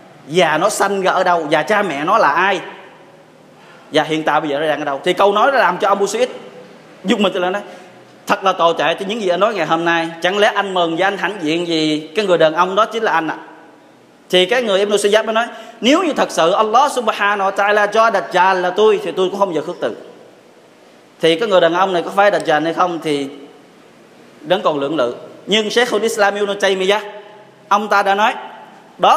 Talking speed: 235 wpm